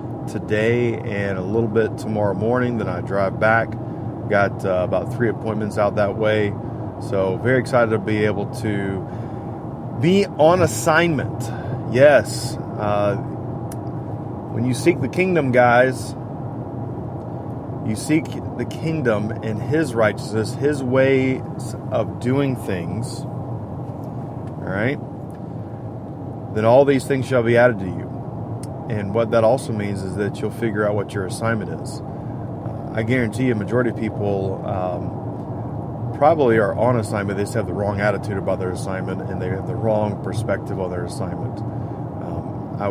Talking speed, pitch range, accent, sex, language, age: 150 wpm, 105-130 Hz, American, male, English, 30-49